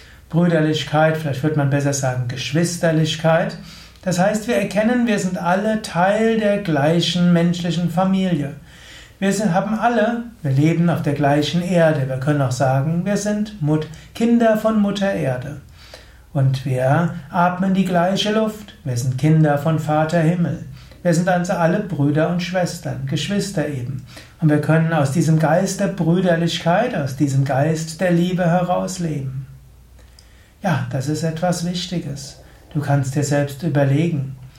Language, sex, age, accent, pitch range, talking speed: German, male, 60-79, German, 145-180 Hz, 145 wpm